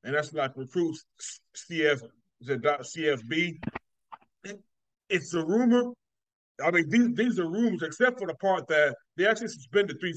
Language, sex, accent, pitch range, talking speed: English, male, American, 145-190 Hz, 135 wpm